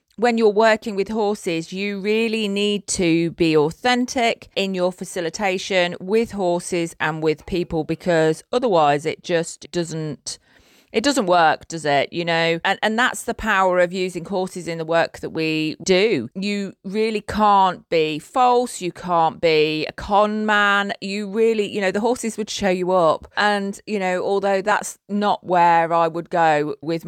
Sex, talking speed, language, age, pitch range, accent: female, 170 wpm, English, 30-49, 165-205 Hz, British